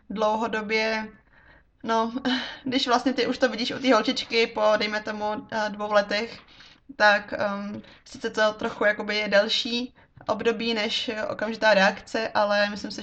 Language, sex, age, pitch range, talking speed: Czech, female, 20-39, 200-225 Hz, 145 wpm